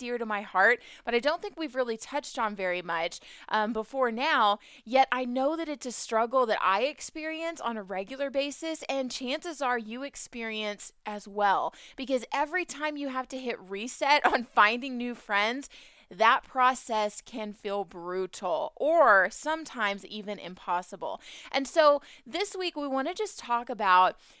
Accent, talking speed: American, 170 wpm